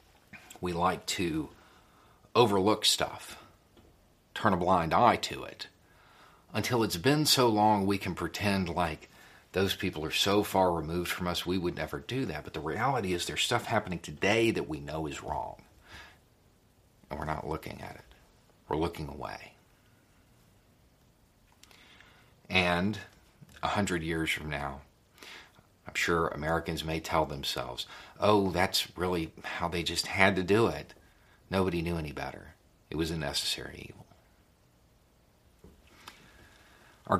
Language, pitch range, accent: English, 80-100 Hz, American